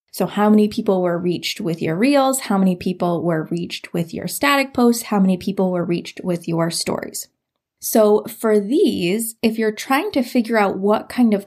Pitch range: 185-235 Hz